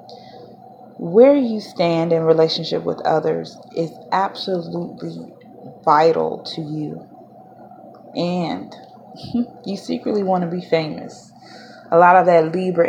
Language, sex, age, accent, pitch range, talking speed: English, female, 20-39, American, 160-230 Hz, 110 wpm